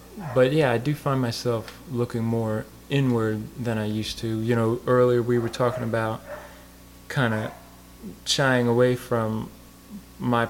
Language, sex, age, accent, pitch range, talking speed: English, male, 20-39, American, 105-120 Hz, 150 wpm